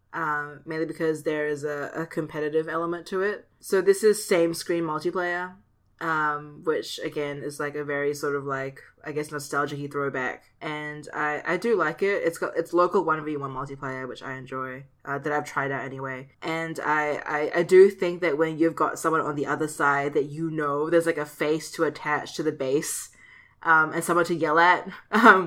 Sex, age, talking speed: female, 20-39, 200 wpm